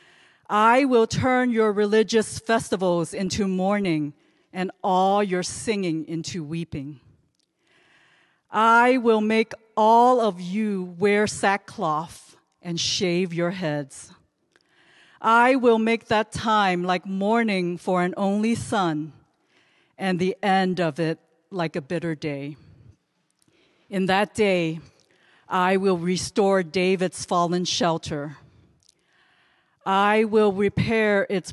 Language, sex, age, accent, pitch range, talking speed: English, female, 40-59, American, 160-210 Hz, 110 wpm